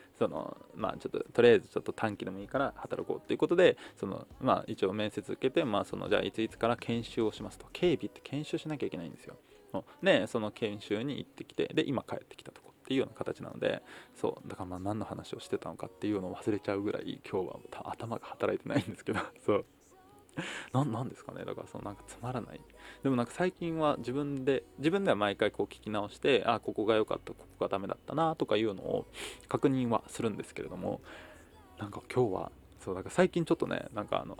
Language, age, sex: Japanese, 20-39, male